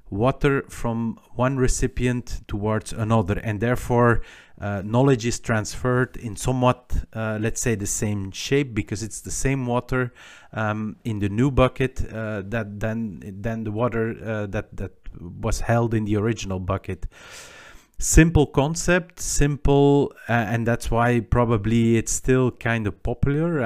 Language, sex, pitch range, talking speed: English, male, 105-125 Hz, 145 wpm